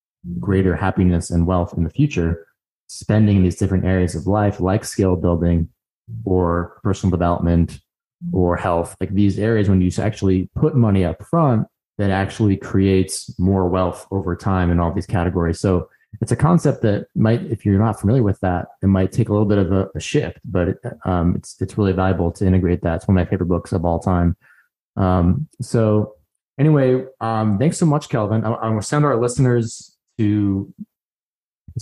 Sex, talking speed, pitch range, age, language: male, 185 wpm, 95-110 Hz, 20-39, English